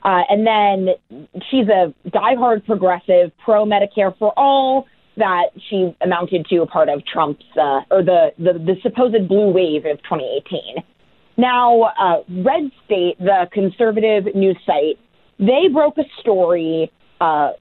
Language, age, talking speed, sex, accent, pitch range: English, 30-49, 145 wpm, female, American, 185-250 Hz